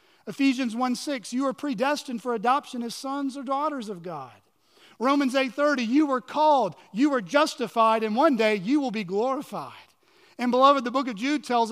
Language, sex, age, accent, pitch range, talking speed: English, male, 40-59, American, 190-265 Hz, 180 wpm